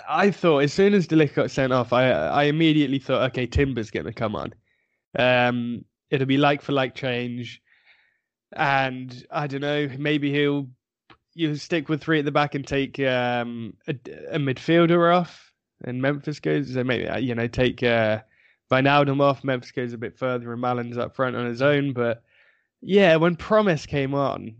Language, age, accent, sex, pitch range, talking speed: English, 20-39, British, male, 125-160 Hz, 185 wpm